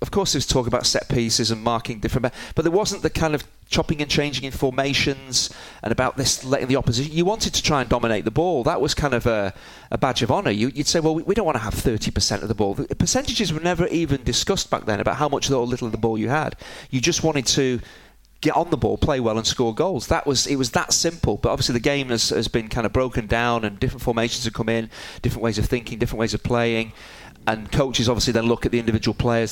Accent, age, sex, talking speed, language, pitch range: British, 30-49, male, 260 wpm, English, 110-140 Hz